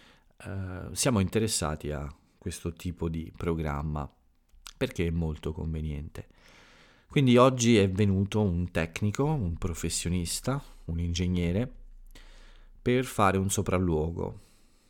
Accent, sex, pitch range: native, male, 85-100 Hz